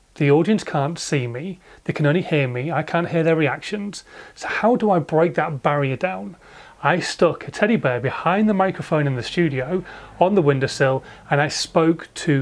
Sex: male